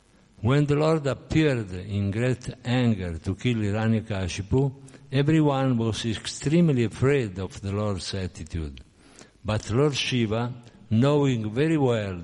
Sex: male